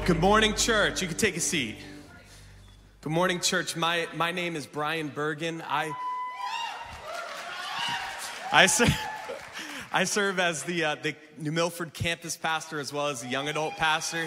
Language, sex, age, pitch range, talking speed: English, male, 30-49, 115-155 Hz, 155 wpm